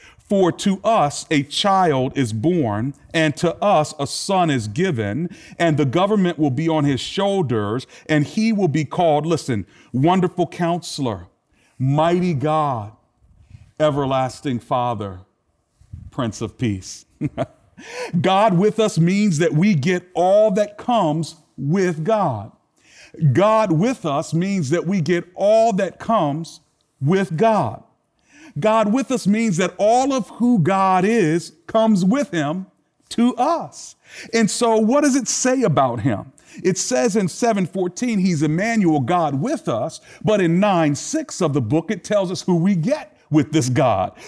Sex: male